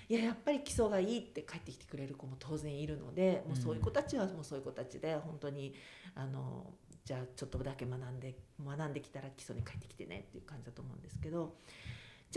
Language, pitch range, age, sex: Japanese, 135-195 Hz, 40-59, female